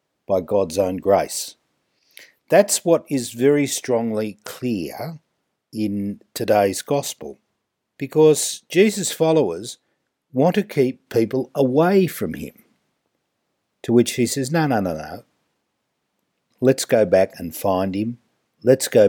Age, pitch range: 50-69, 100-145 Hz